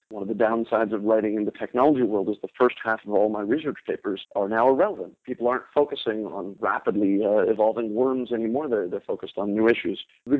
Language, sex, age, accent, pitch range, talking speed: English, male, 40-59, American, 110-140 Hz, 220 wpm